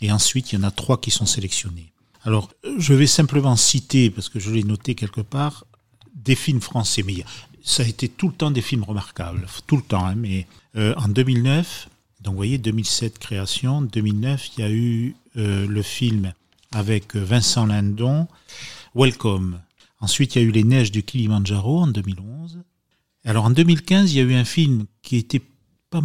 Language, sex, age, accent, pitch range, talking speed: French, male, 40-59, French, 105-130 Hz, 190 wpm